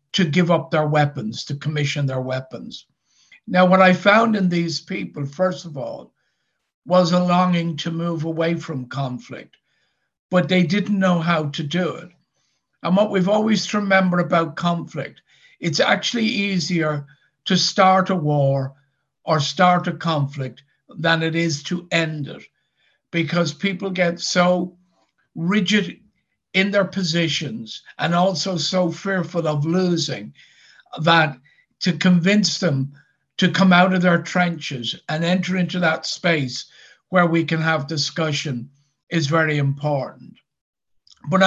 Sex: male